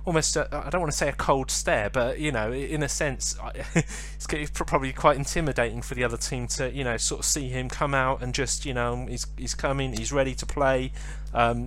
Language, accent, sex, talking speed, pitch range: English, British, male, 230 wpm, 125-150 Hz